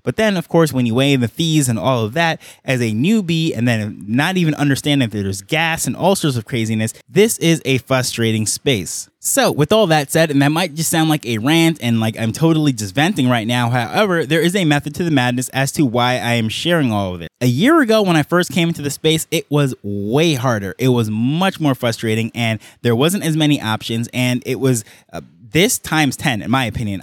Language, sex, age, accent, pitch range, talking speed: English, male, 20-39, American, 120-155 Hz, 240 wpm